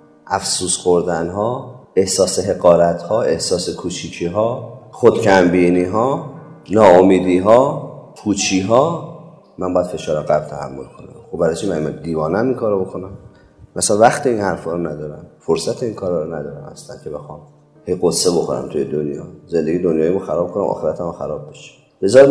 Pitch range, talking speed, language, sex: 90-135 Hz, 155 wpm, Persian, male